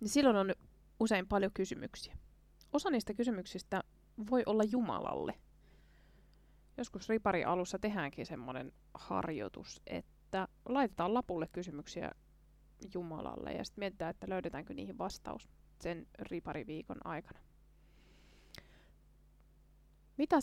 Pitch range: 175-225 Hz